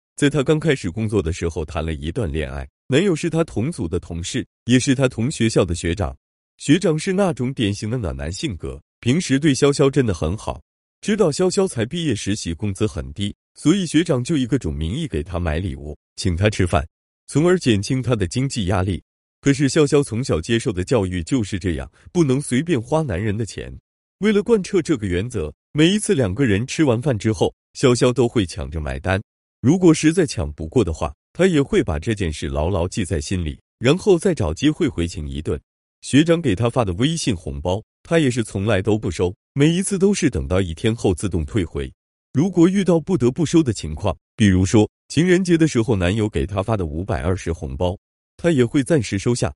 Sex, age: male, 30-49